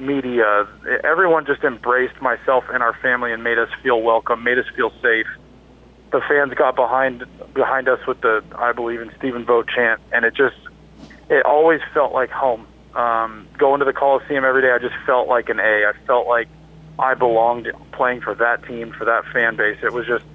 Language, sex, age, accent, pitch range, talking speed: English, male, 40-59, American, 110-130 Hz, 200 wpm